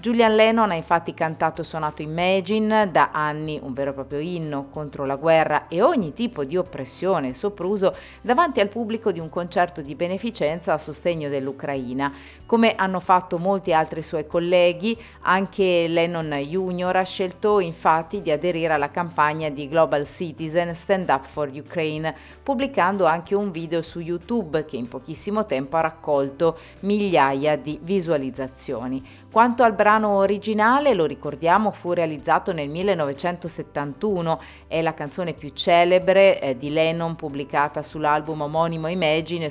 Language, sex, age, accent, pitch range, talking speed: Italian, female, 30-49, native, 150-185 Hz, 145 wpm